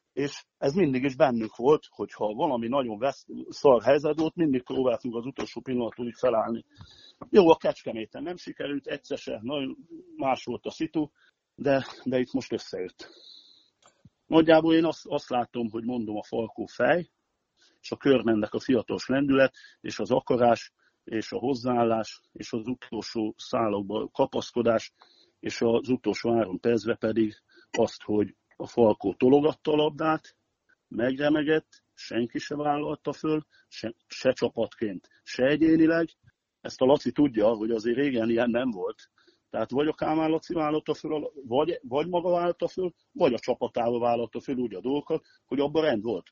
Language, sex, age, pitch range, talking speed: Hungarian, male, 50-69, 120-160 Hz, 155 wpm